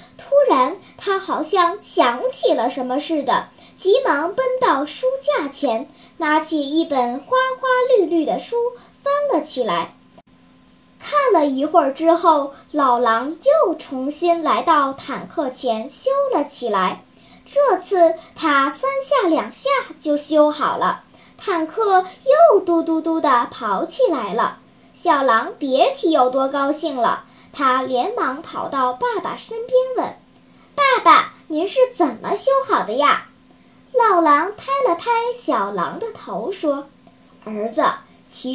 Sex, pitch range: male, 270-390 Hz